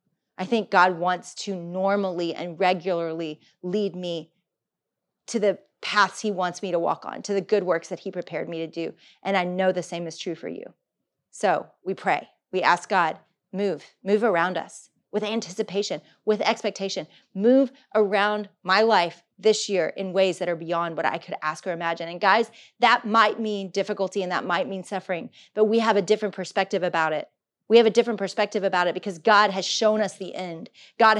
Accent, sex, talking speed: American, female, 200 wpm